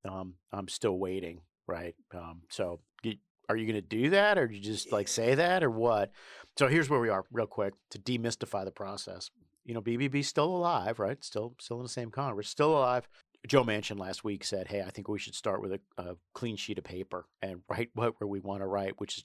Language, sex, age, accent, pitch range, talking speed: English, male, 50-69, American, 100-120 Hz, 230 wpm